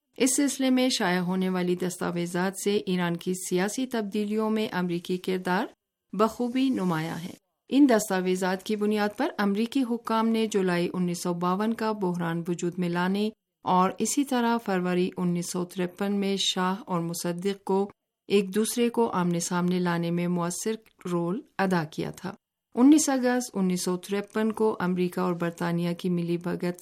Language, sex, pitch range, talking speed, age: Urdu, female, 175-220 Hz, 150 wpm, 50-69